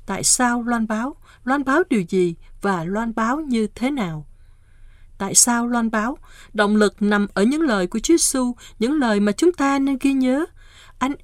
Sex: female